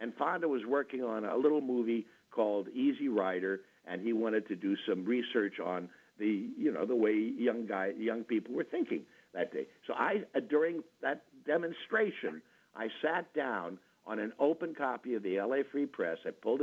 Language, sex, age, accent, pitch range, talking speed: English, male, 60-79, American, 100-140 Hz, 190 wpm